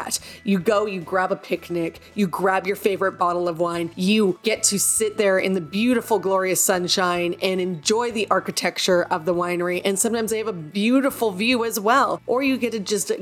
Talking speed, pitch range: 200 wpm, 185-235 Hz